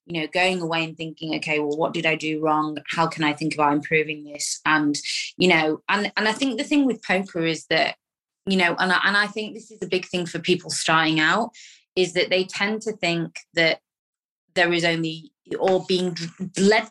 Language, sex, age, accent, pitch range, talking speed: English, female, 20-39, British, 160-190 Hz, 215 wpm